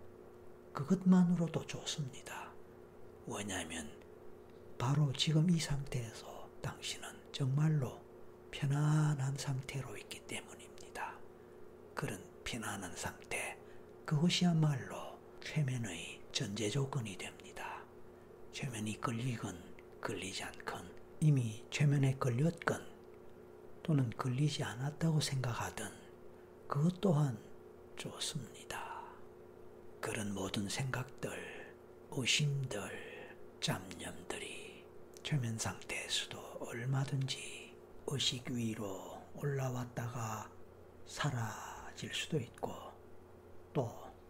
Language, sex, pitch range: Korean, male, 90-145 Hz